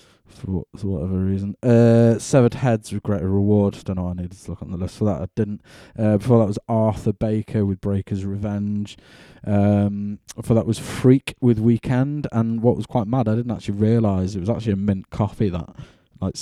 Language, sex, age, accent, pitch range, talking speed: English, male, 20-39, British, 95-115 Hz, 210 wpm